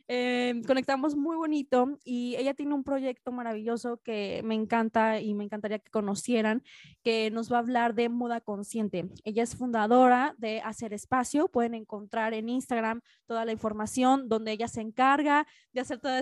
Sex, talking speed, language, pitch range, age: female, 170 wpm, Spanish, 220-260 Hz, 20-39